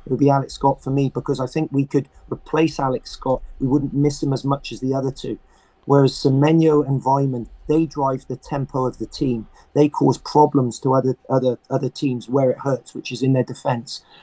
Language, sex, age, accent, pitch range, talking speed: English, male, 30-49, British, 130-145 Hz, 220 wpm